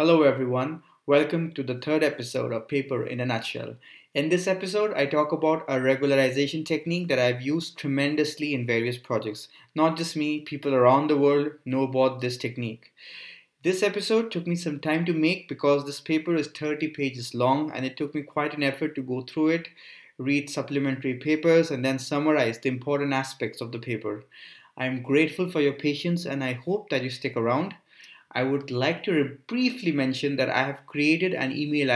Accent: Indian